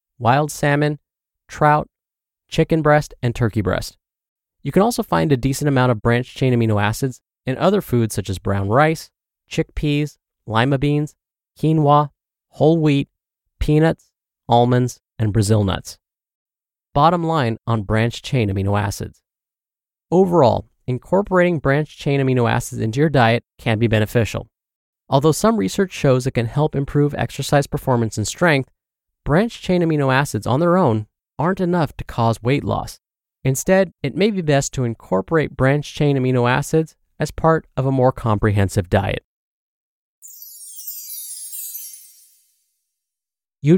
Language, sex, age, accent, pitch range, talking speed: English, male, 20-39, American, 110-155 Hz, 135 wpm